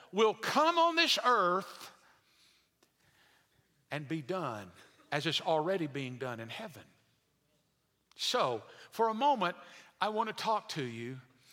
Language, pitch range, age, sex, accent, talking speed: English, 125-180 Hz, 50-69, male, American, 130 wpm